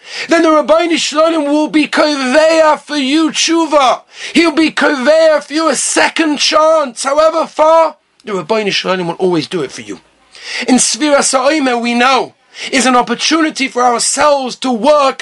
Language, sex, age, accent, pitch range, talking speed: English, male, 40-59, British, 255-310 Hz, 160 wpm